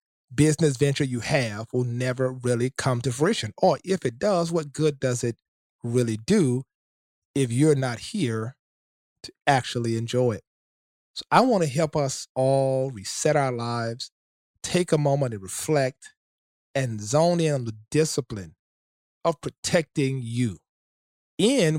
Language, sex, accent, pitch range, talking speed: English, male, American, 120-160 Hz, 145 wpm